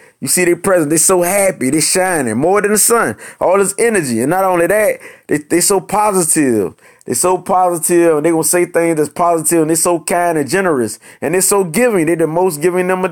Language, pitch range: English, 165-195 Hz